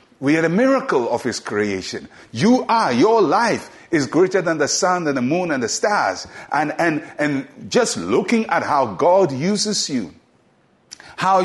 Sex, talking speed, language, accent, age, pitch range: male, 175 wpm, English, Nigerian, 60-79, 125-190 Hz